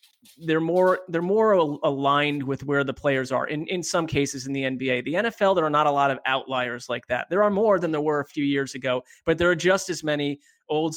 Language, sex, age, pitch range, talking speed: English, male, 30-49, 140-170 Hz, 245 wpm